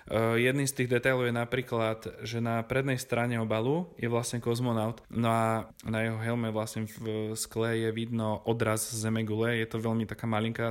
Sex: male